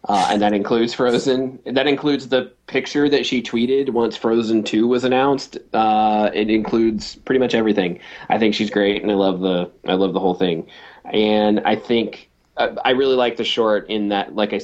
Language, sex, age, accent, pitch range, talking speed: English, male, 20-39, American, 100-135 Hz, 200 wpm